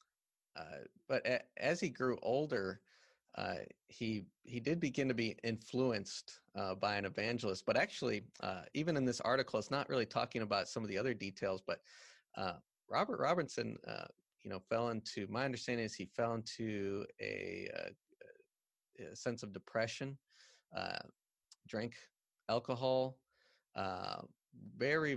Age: 30-49